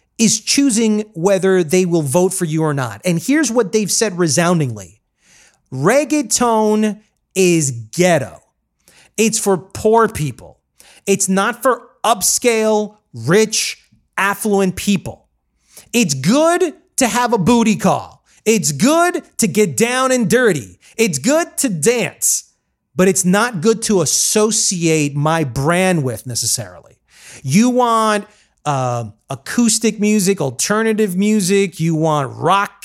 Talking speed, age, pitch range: 125 wpm, 30-49, 160-220 Hz